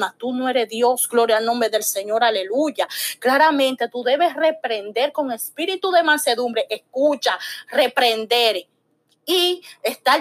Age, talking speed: 30-49, 130 wpm